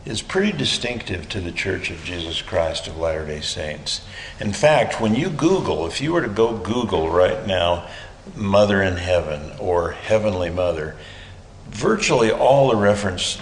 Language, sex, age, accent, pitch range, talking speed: English, male, 60-79, American, 90-105 Hz, 155 wpm